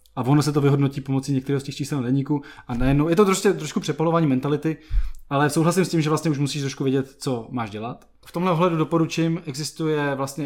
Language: Czech